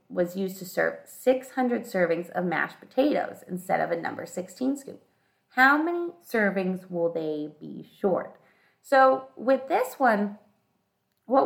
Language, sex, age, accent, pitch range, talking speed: English, female, 30-49, American, 180-260 Hz, 140 wpm